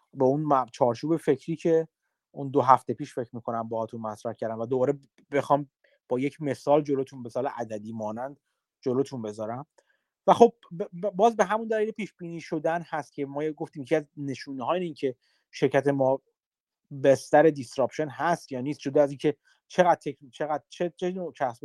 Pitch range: 135-180 Hz